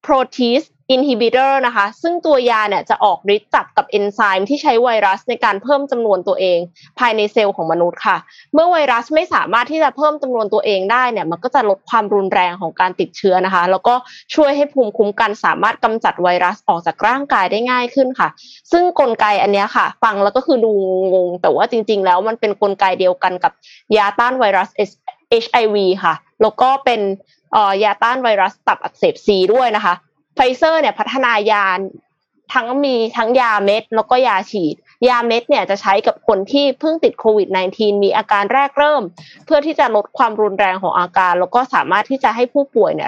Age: 20-39